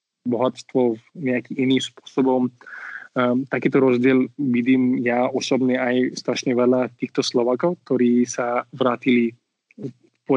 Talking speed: 115 wpm